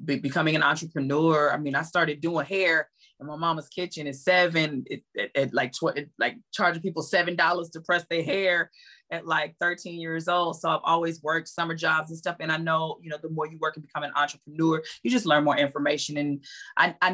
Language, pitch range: English, 145-175 Hz